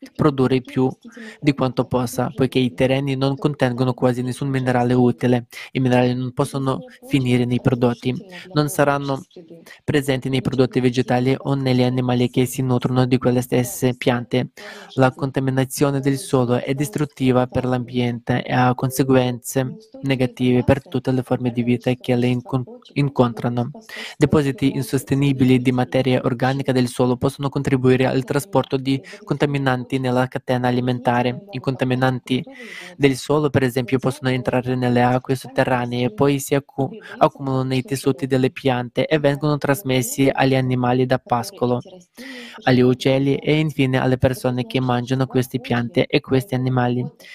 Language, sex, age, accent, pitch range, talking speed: Italian, male, 20-39, native, 125-140 Hz, 145 wpm